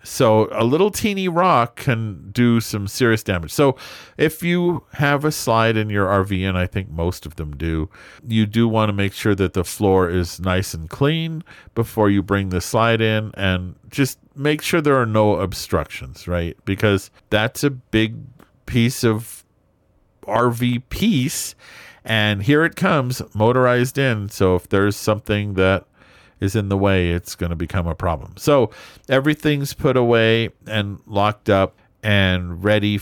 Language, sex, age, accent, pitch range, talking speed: English, male, 50-69, American, 95-125 Hz, 165 wpm